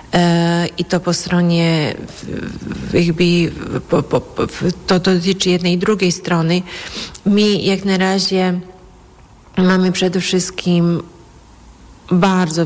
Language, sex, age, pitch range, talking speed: Polish, female, 40-59, 165-180 Hz, 90 wpm